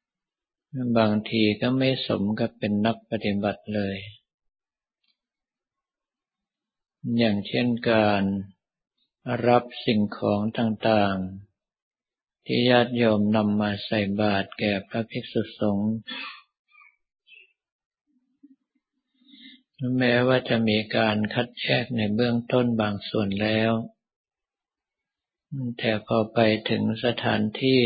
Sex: male